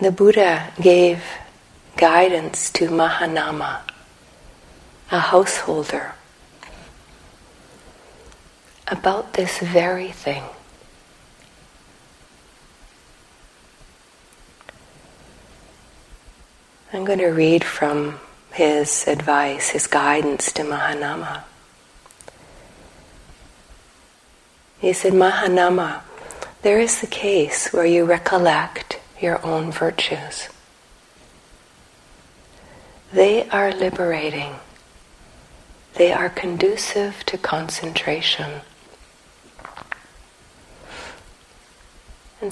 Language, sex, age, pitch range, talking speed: English, female, 40-59, 150-185 Hz, 65 wpm